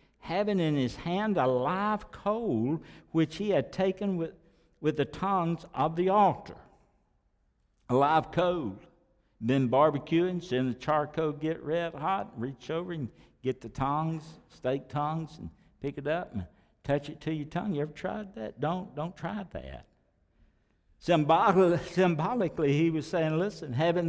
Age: 60-79